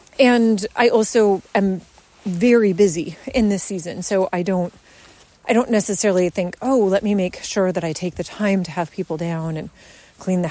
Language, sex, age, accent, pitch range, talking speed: English, female, 30-49, American, 190-250 Hz, 190 wpm